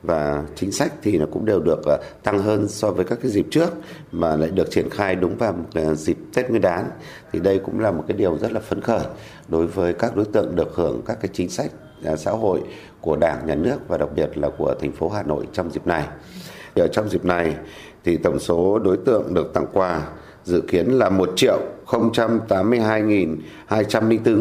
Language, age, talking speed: Vietnamese, 60-79, 205 wpm